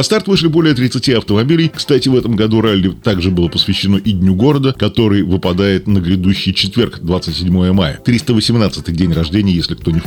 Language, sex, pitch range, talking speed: Russian, male, 90-120 Hz, 185 wpm